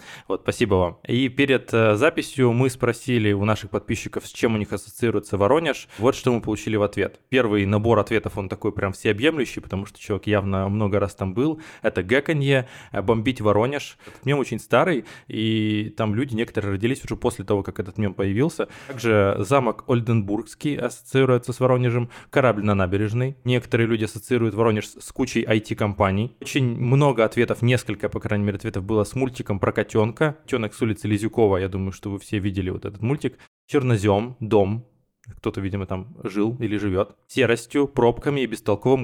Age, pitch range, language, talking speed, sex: 20-39, 105-120 Hz, Russian, 175 wpm, male